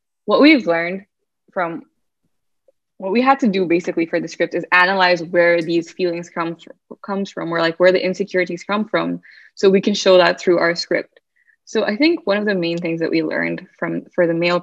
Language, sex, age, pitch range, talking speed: English, female, 10-29, 170-205 Hz, 215 wpm